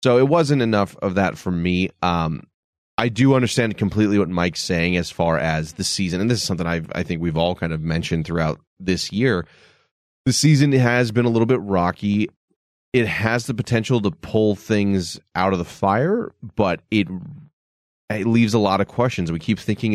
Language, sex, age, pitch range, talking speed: English, male, 30-49, 90-115 Hz, 195 wpm